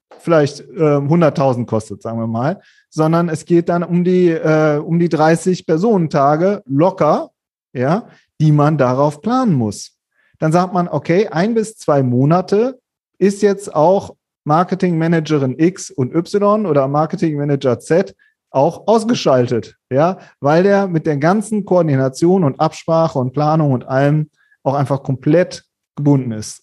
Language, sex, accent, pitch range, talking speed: German, male, German, 140-175 Hz, 135 wpm